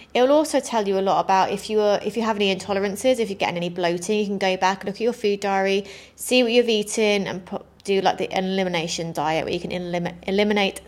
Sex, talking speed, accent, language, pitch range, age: female, 255 wpm, British, English, 185-220 Hz, 20-39